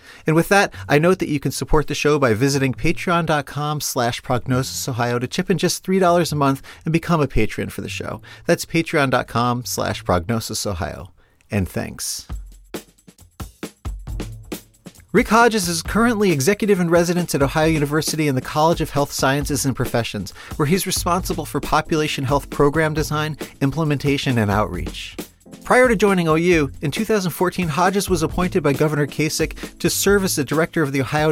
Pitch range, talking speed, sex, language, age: 125-165 Hz, 160 wpm, male, English, 40-59